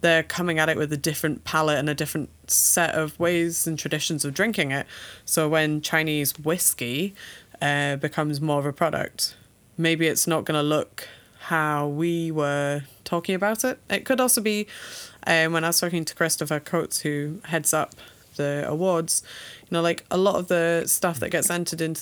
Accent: British